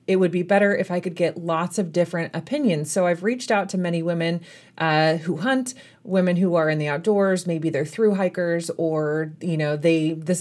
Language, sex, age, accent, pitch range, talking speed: English, female, 30-49, American, 165-195 Hz, 215 wpm